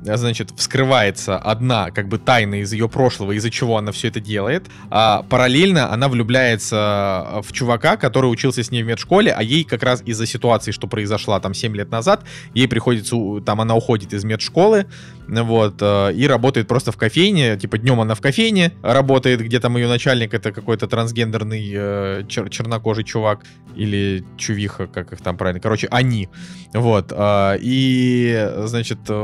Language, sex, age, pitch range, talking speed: Russian, male, 20-39, 100-130 Hz, 160 wpm